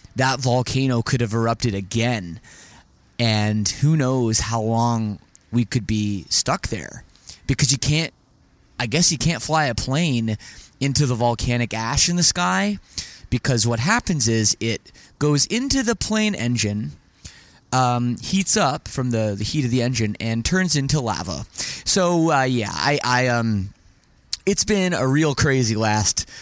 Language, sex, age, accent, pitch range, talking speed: English, male, 20-39, American, 110-135 Hz, 155 wpm